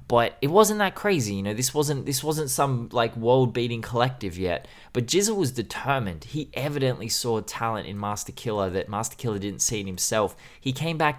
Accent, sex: Australian, male